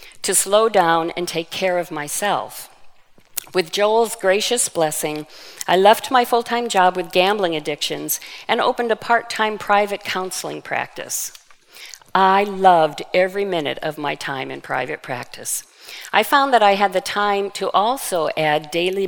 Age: 50-69